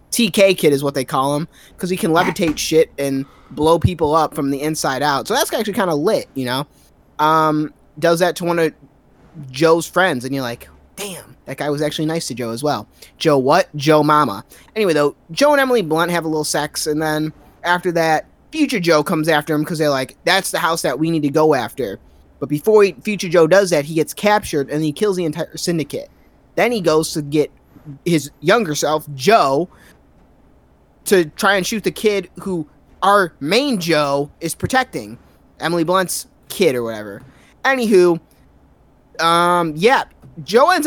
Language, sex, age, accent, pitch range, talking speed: English, male, 20-39, American, 145-190 Hz, 190 wpm